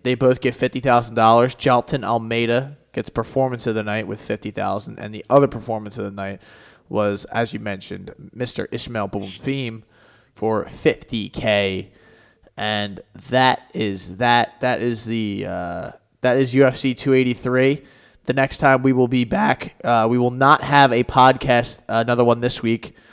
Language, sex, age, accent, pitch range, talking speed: English, male, 20-39, American, 115-135 Hz, 170 wpm